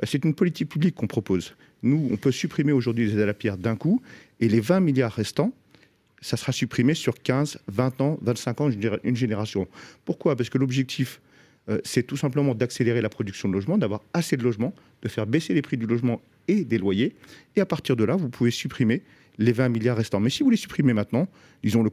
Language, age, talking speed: French, 40-59, 220 wpm